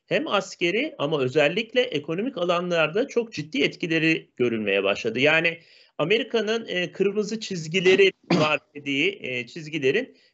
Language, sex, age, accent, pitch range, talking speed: Turkish, male, 40-59, native, 150-200 Hz, 105 wpm